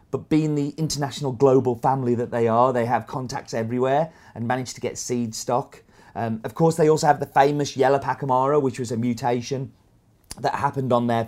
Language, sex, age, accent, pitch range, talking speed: English, male, 30-49, British, 115-150 Hz, 195 wpm